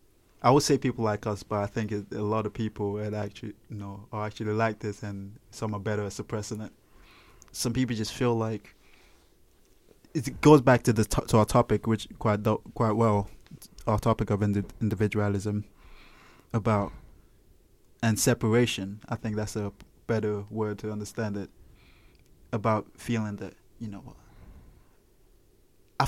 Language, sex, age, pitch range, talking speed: English, male, 20-39, 105-125 Hz, 155 wpm